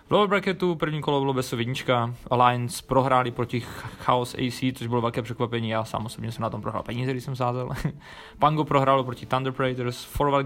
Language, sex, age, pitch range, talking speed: Czech, male, 20-39, 115-140 Hz, 190 wpm